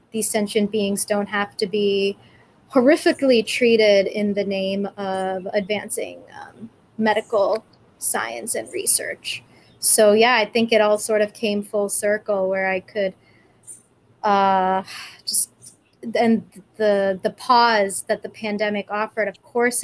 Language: English